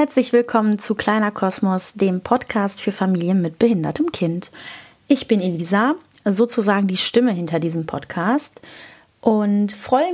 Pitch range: 190-240 Hz